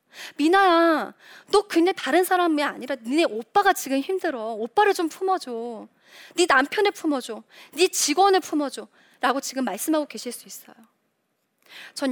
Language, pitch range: Korean, 225-320 Hz